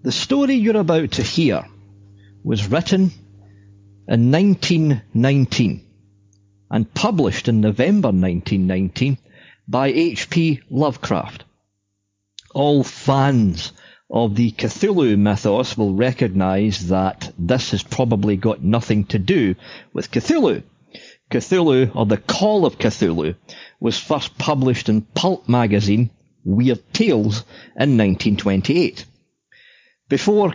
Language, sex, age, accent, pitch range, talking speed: English, male, 50-69, British, 100-135 Hz, 105 wpm